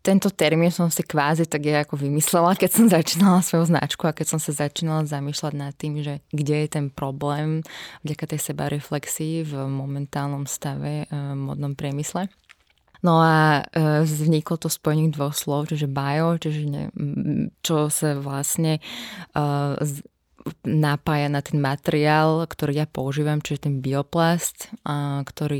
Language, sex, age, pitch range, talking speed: Slovak, female, 20-39, 145-160 Hz, 150 wpm